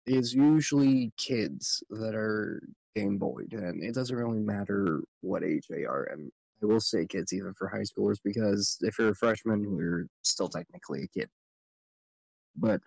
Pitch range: 100-120 Hz